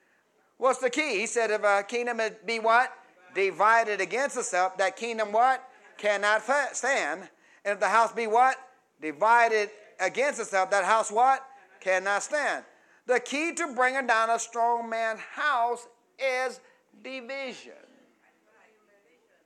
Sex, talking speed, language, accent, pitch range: male, 135 wpm, English, American, 205-280 Hz